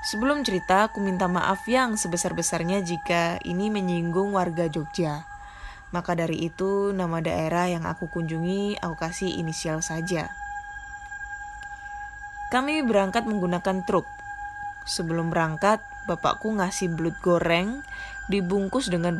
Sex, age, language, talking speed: female, 20-39, Indonesian, 115 wpm